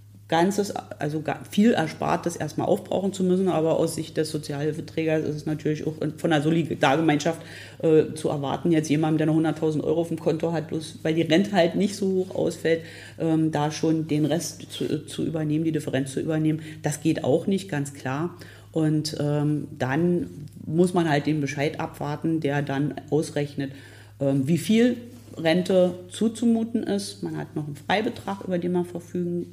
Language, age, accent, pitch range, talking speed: German, 40-59, German, 140-160 Hz, 180 wpm